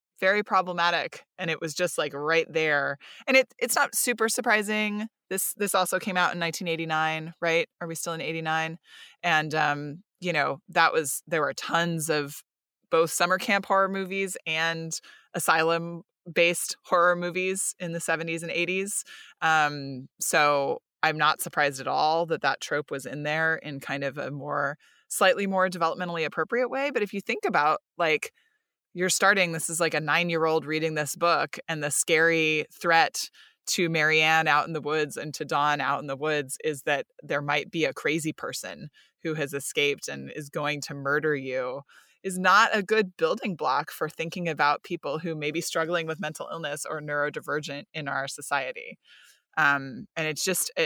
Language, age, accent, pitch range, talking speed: English, 20-39, American, 150-185 Hz, 180 wpm